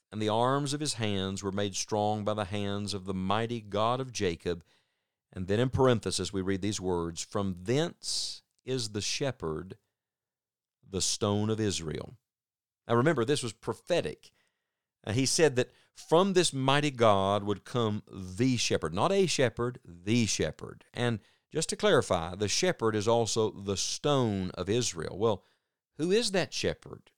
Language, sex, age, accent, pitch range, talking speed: English, male, 50-69, American, 100-130 Hz, 160 wpm